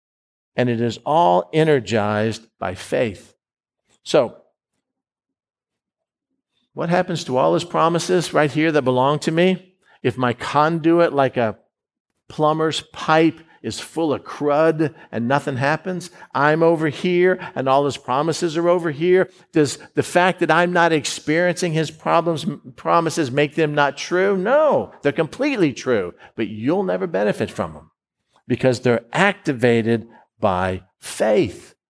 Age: 50-69